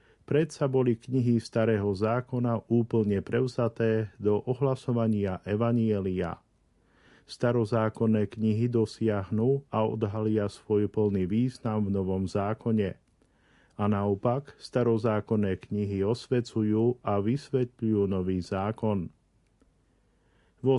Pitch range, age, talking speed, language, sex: 105-125 Hz, 40-59, 90 wpm, Slovak, male